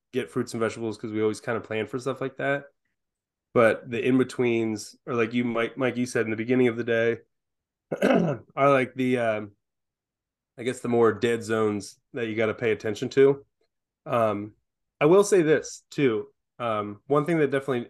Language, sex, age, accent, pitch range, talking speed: English, male, 20-39, American, 110-130 Hz, 195 wpm